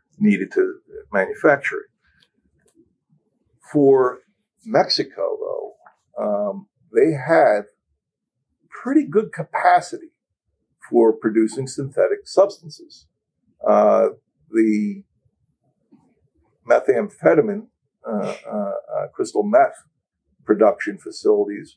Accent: American